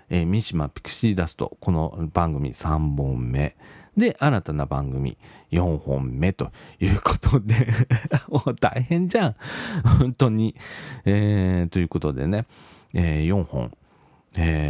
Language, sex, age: Japanese, male, 40-59